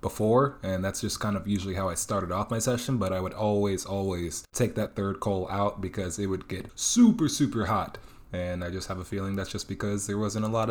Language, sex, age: English, male, 20-39